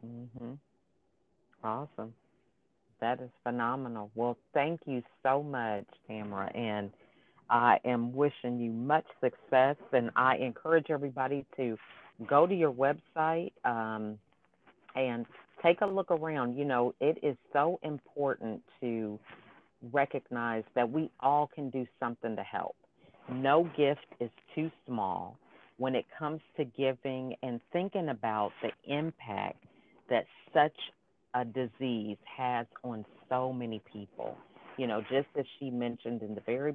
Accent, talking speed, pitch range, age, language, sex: American, 135 wpm, 115-145 Hz, 50-69, English, female